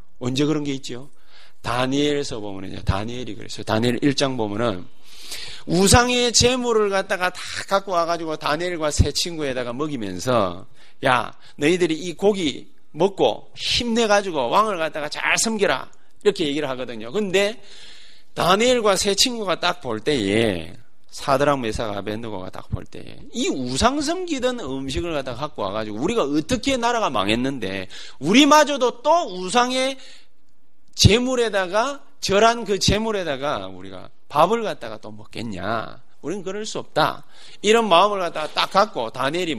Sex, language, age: male, Korean, 30-49